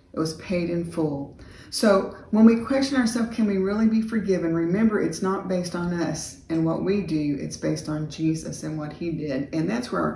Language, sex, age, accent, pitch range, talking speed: English, female, 40-59, American, 150-180 Hz, 220 wpm